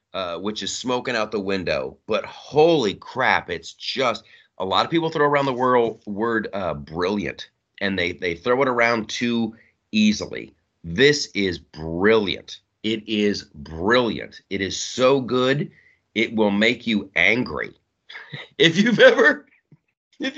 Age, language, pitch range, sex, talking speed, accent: 30-49, English, 105-145 Hz, male, 145 wpm, American